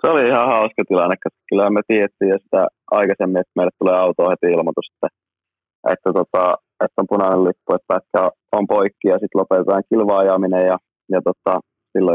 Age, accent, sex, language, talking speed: 20-39, native, male, Finnish, 175 wpm